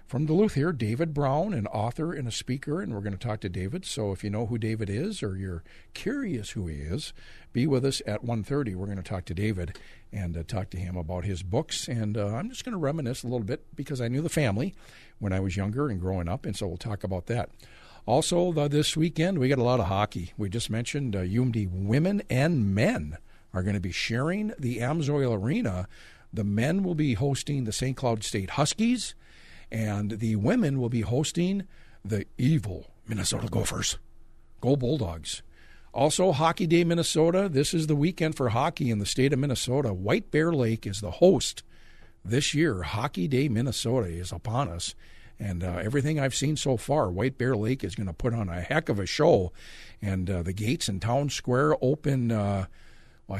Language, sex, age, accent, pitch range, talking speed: English, male, 60-79, American, 100-145 Hz, 205 wpm